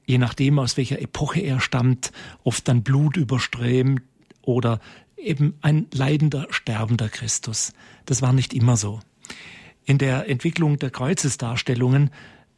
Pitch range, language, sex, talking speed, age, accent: 120-145 Hz, German, male, 130 wpm, 40-59, German